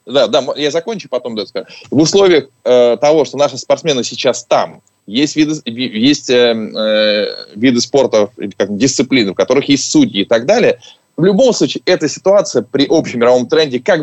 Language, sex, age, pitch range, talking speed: Russian, male, 20-39, 115-150 Hz, 185 wpm